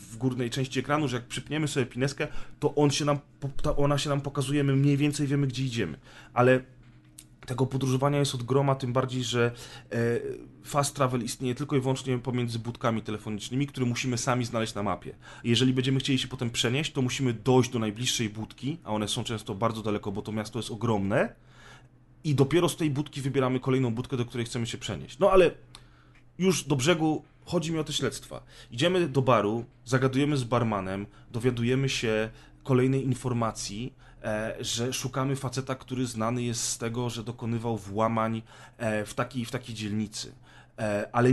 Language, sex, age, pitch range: Polish, male, 30-49, 115-140 Hz